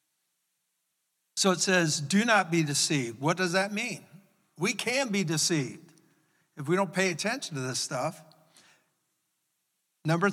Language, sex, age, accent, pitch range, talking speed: English, male, 50-69, American, 160-195 Hz, 140 wpm